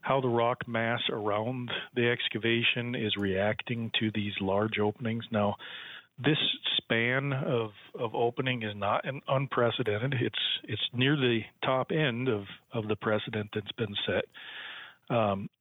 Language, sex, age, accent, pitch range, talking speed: English, male, 40-59, American, 105-130 Hz, 140 wpm